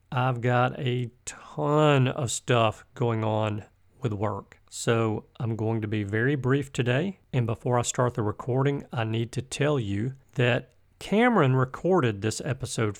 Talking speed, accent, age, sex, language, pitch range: 155 wpm, American, 50-69, male, English, 115-140 Hz